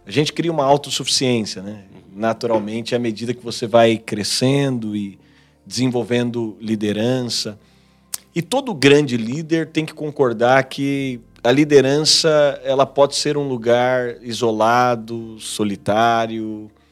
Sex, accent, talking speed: male, Brazilian, 115 wpm